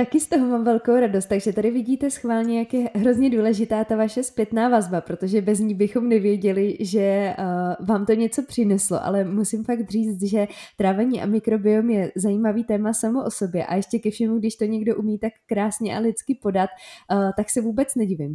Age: 20-39